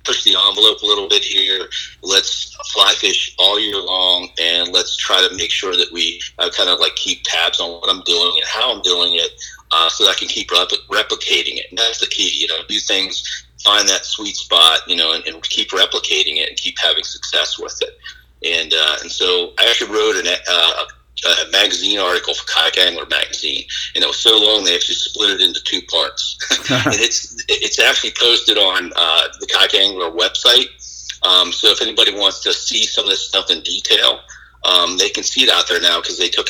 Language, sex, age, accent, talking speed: English, male, 40-59, American, 220 wpm